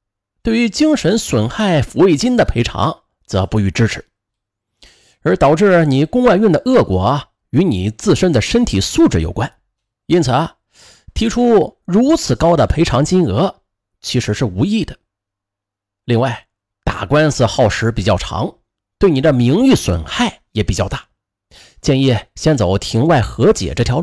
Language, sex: Chinese, male